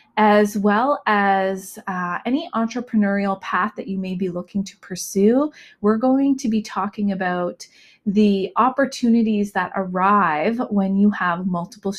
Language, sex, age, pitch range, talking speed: English, female, 30-49, 185-220 Hz, 140 wpm